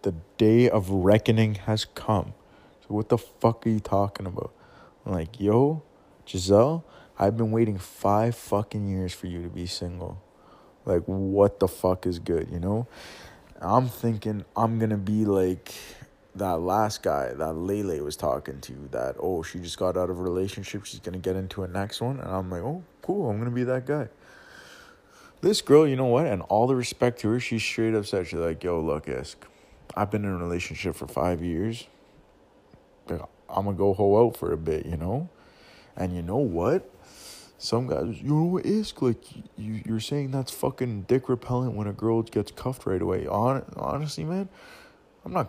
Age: 20-39